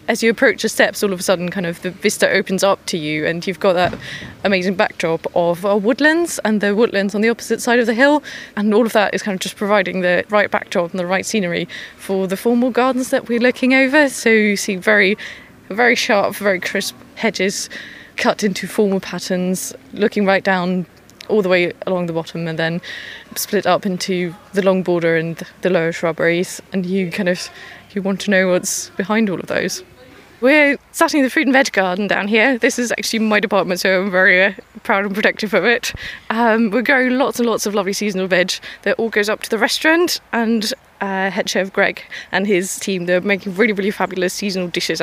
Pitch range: 185-220 Hz